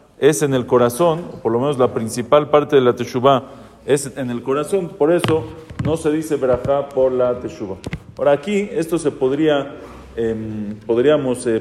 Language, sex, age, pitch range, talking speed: English, male, 40-59, 115-155 Hz, 175 wpm